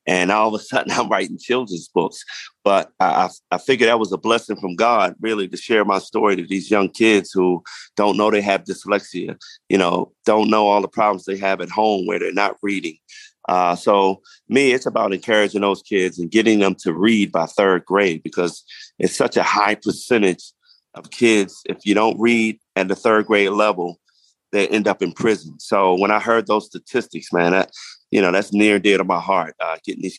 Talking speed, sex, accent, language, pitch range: 215 wpm, male, American, English, 95-115 Hz